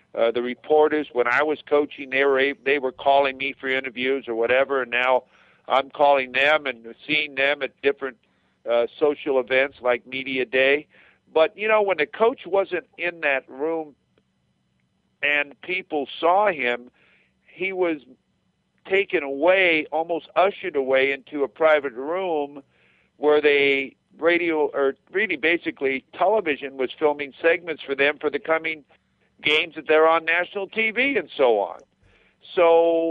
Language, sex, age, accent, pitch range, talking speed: English, male, 50-69, American, 125-165 Hz, 150 wpm